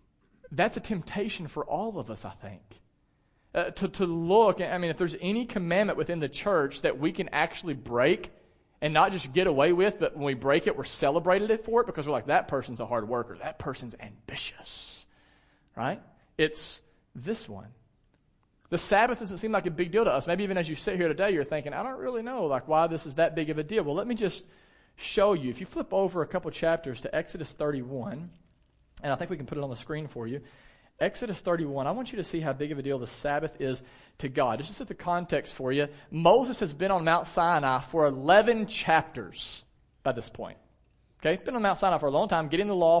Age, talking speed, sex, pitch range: 40-59, 230 wpm, male, 140-195 Hz